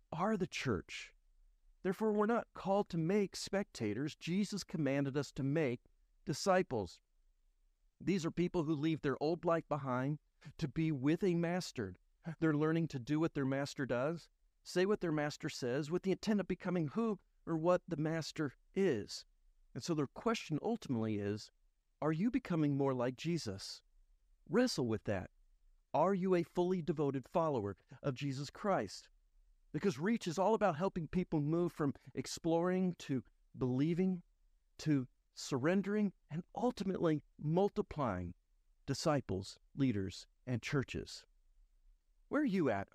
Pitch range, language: 130-180 Hz, English